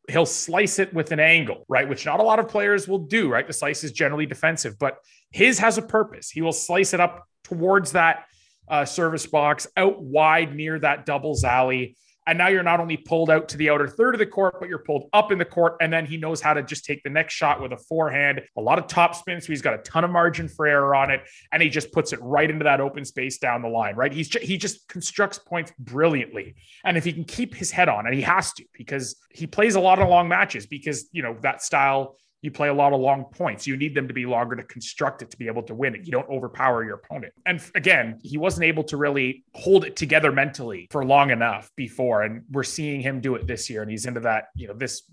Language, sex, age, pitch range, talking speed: English, male, 30-49, 130-170 Hz, 260 wpm